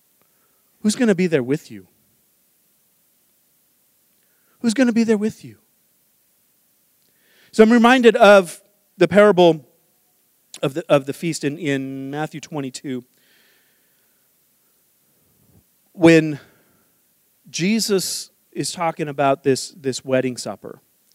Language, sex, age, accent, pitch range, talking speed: English, male, 40-59, American, 135-180 Hz, 105 wpm